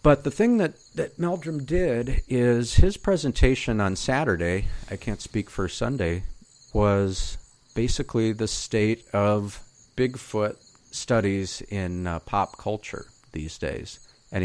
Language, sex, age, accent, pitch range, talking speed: English, male, 50-69, American, 95-120 Hz, 130 wpm